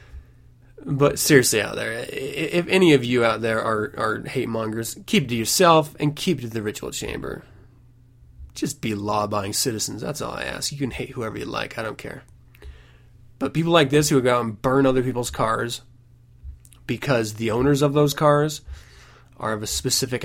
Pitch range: 115-155 Hz